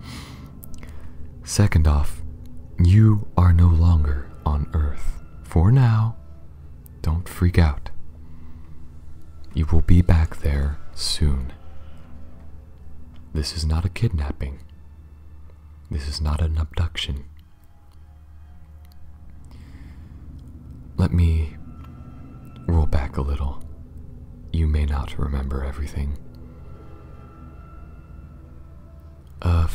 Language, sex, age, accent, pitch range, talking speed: English, male, 30-49, American, 75-80 Hz, 85 wpm